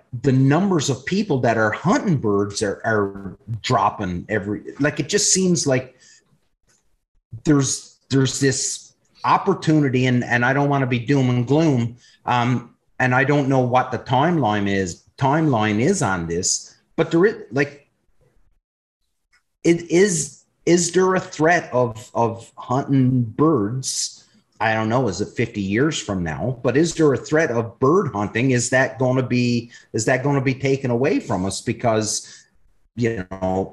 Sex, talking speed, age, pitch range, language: male, 165 wpm, 30-49, 110-145 Hz, English